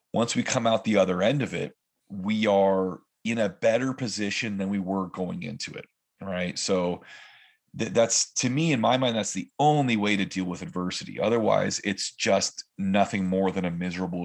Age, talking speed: 30-49, 190 wpm